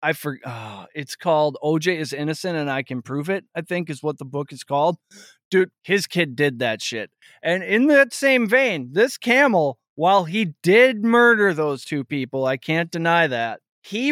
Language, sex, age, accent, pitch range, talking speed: English, male, 20-39, American, 150-215 Hz, 185 wpm